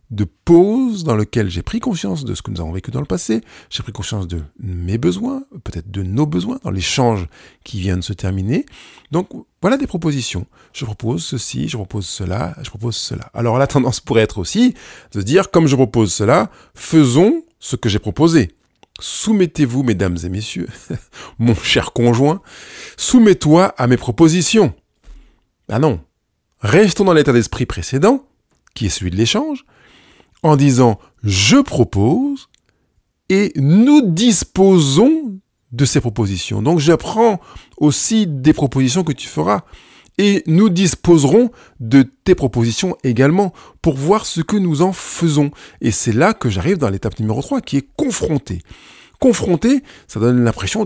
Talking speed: 160 wpm